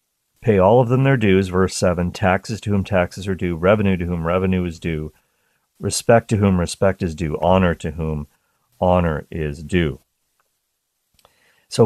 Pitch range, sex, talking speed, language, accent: 85-110 Hz, male, 165 wpm, English, American